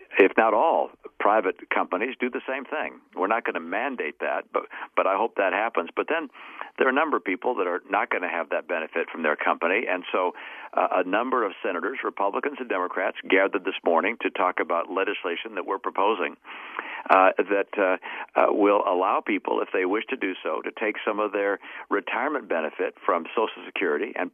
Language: English